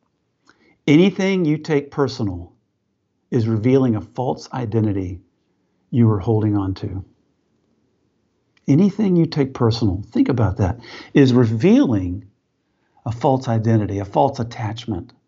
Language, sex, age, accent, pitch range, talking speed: English, male, 50-69, American, 105-130 Hz, 115 wpm